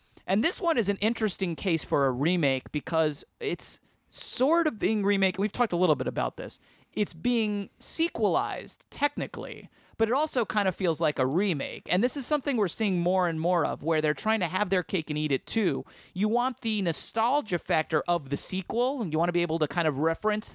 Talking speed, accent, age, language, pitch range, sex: 220 wpm, American, 30-49, English, 150-200 Hz, male